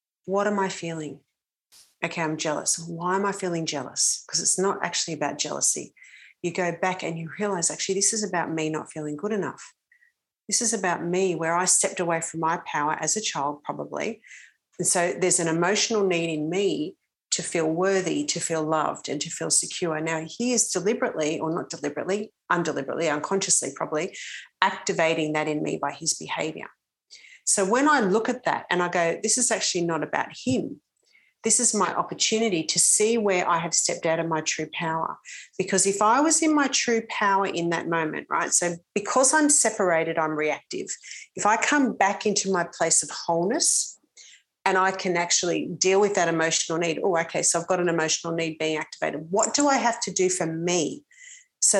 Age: 40-59